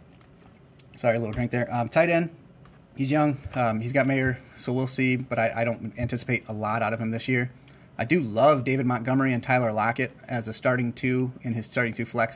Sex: male